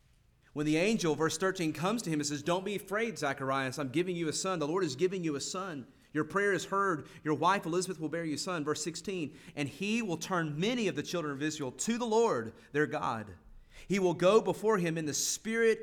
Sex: male